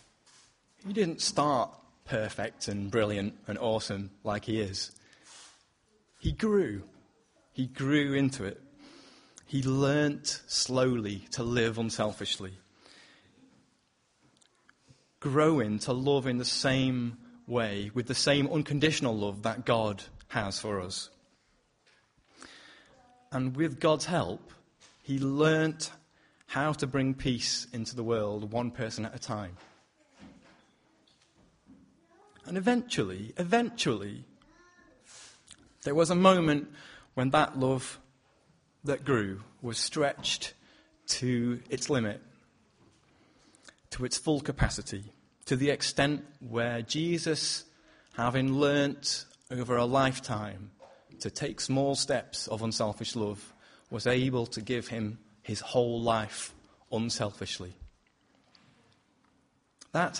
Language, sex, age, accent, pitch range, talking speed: English, male, 30-49, British, 110-145 Hz, 105 wpm